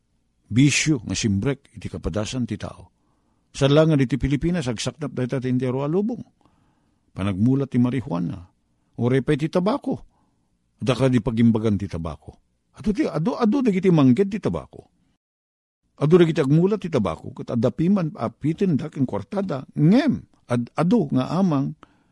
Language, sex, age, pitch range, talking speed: Filipino, male, 50-69, 115-165 Hz, 135 wpm